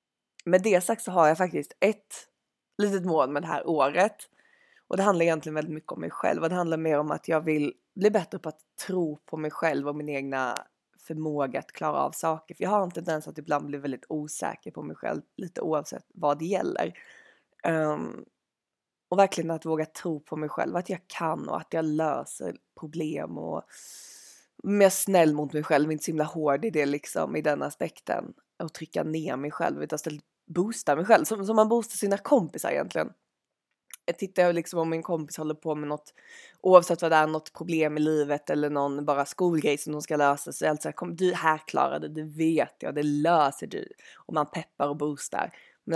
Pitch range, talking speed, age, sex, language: 150-180 Hz, 215 wpm, 20-39, female, Swedish